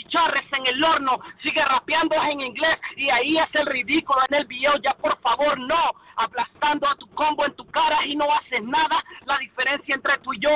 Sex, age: male, 40-59